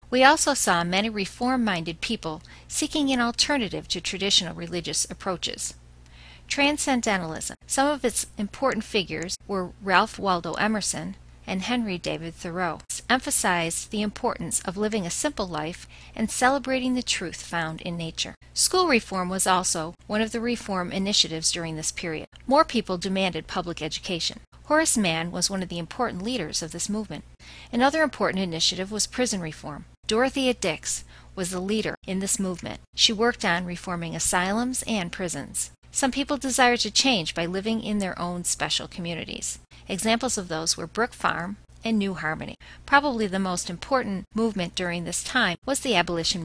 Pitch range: 170-235 Hz